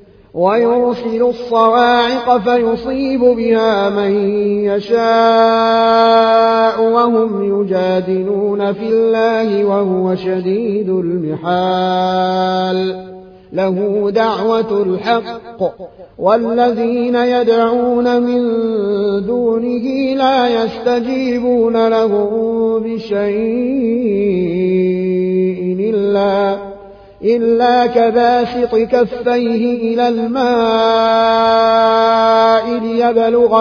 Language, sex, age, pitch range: Arabic, male, 30-49, 195-230 Hz